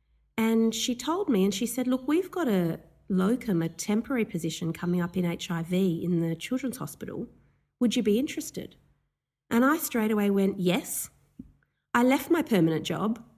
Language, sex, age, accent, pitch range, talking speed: English, female, 40-59, Australian, 175-225 Hz, 170 wpm